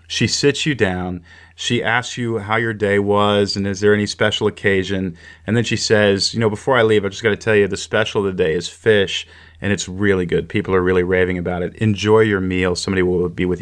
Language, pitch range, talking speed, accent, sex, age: English, 100-135 Hz, 240 wpm, American, male, 40-59